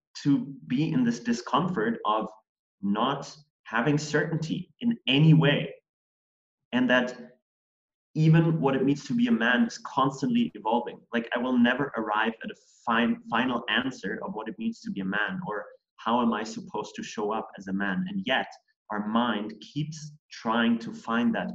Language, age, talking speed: English, 30-49, 175 wpm